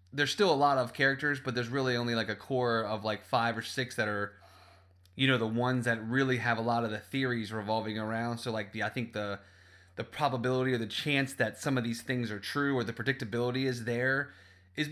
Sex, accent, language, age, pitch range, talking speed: male, American, English, 30-49, 110-130 Hz, 235 wpm